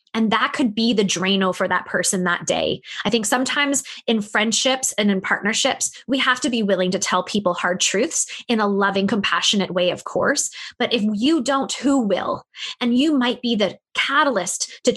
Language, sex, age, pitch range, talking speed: English, female, 20-39, 195-245 Hz, 195 wpm